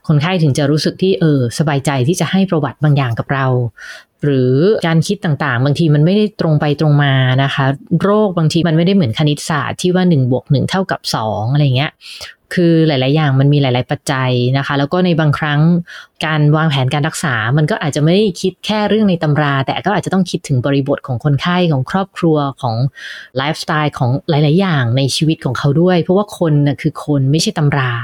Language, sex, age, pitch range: English, female, 20-39, 140-175 Hz